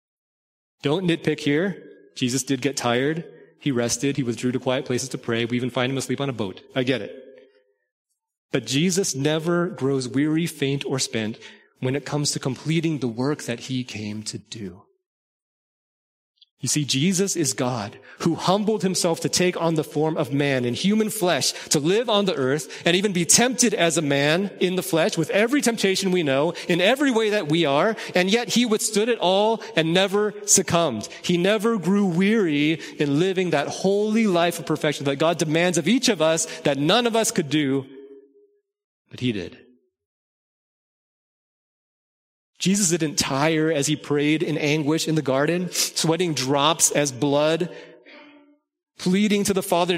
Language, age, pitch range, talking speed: English, 30-49, 135-195 Hz, 175 wpm